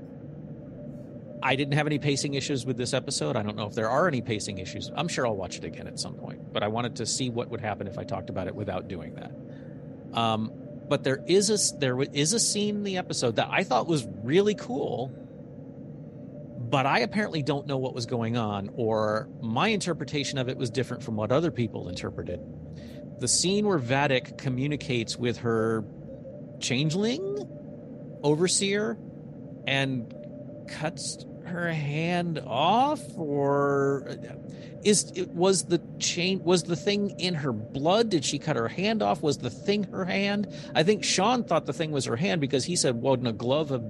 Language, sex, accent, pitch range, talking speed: English, male, American, 120-160 Hz, 185 wpm